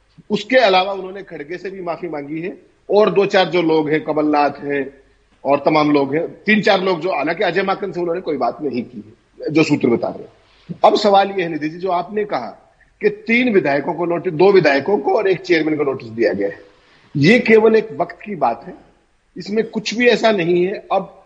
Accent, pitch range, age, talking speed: native, 150-195 Hz, 40-59, 215 wpm